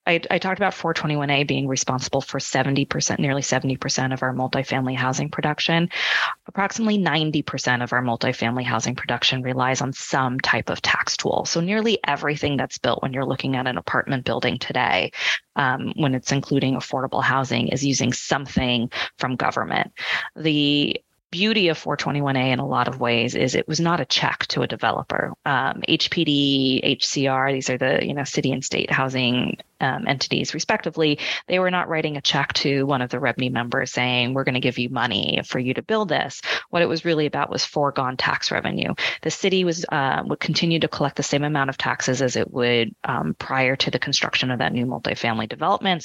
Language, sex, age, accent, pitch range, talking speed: English, female, 20-39, American, 130-160 Hz, 190 wpm